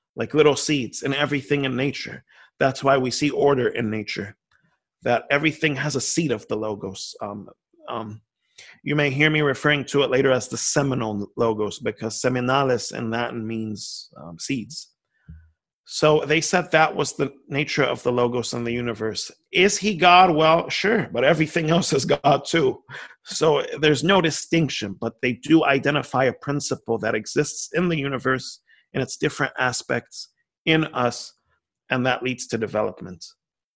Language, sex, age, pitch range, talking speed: English, male, 30-49, 120-155 Hz, 165 wpm